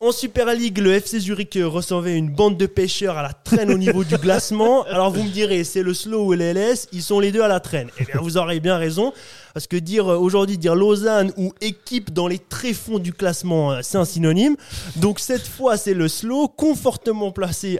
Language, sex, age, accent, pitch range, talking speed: French, male, 20-39, French, 160-205 Hz, 215 wpm